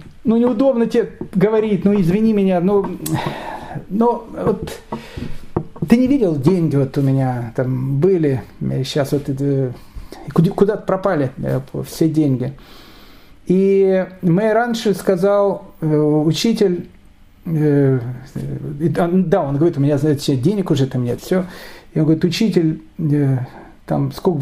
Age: 40-59